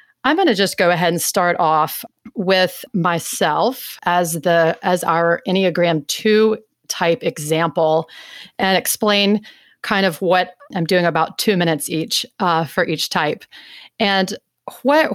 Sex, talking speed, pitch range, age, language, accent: female, 145 wpm, 170-205 Hz, 30-49, English, American